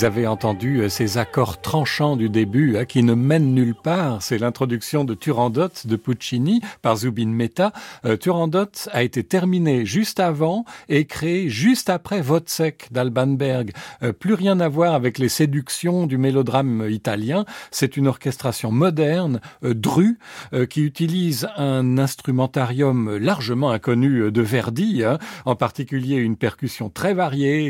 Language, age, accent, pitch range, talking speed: French, 50-69, French, 125-175 Hz, 135 wpm